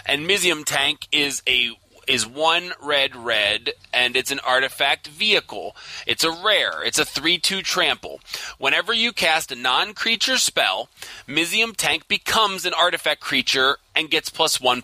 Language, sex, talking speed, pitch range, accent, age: English, male, 150 wpm, 125-175 Hz, American, 30-49